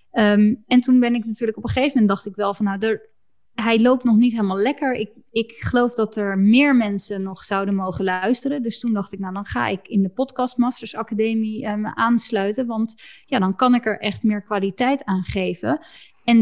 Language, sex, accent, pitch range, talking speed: Dutch, female, Dutch, 205-240 Hz, 220 wpm